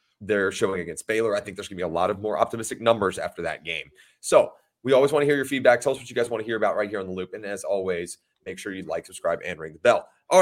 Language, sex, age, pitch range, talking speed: English, male, 30-49, 105-165 Hz, 310 wpm